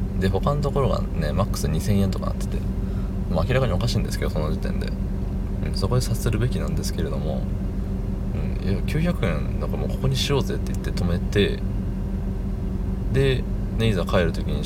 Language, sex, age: Japanese, male, 20-39